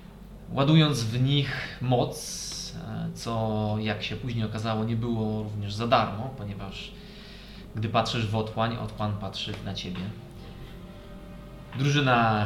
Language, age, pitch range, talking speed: Polish, 20-39, 105-130 Hz, 115 wpm